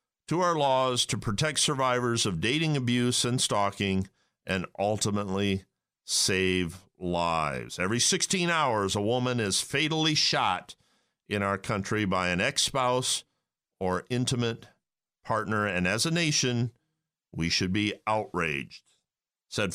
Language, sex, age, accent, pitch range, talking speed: English, male, 50-69, American, 100-130 Hz, 125 wpm